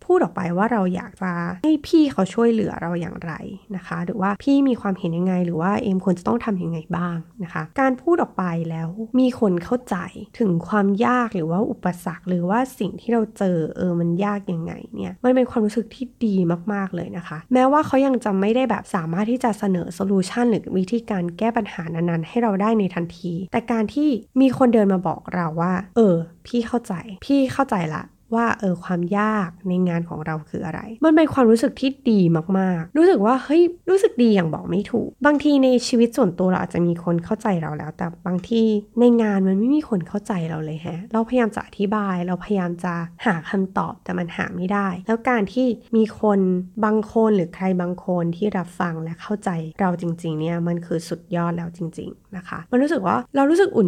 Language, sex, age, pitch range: Thai, female, 20-39, 175-235 Hz